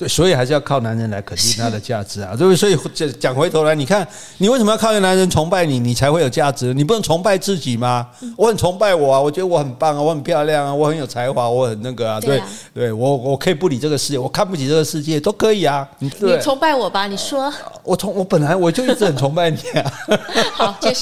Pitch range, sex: 140-205 Hz, male